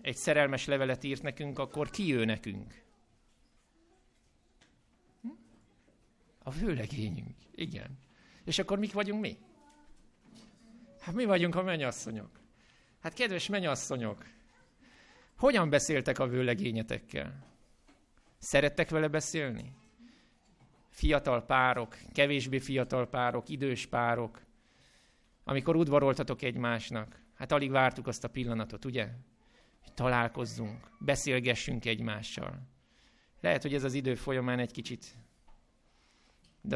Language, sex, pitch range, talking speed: Hungarian, male, 120-145 Hz, 100 wpm